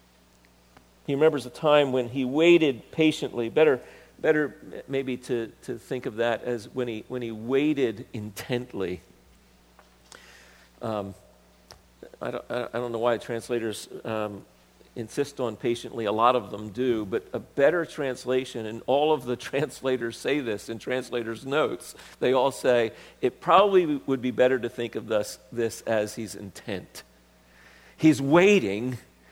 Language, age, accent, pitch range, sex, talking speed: English, 50-69, American, 110-150 Hz, male, 145 wpm